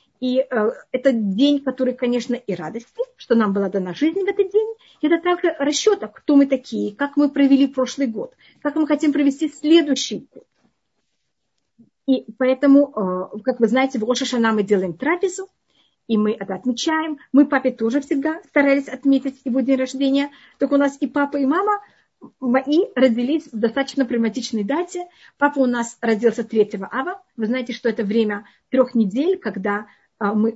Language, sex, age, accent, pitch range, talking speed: Russian, female, 40-59, native, 220-285 Hz, 170 wpm